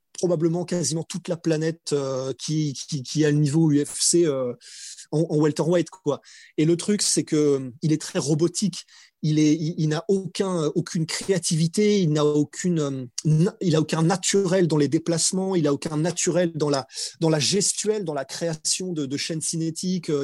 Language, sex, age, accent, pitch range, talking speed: French, male, 30-49, French, 150-185 Hz, 180 wpm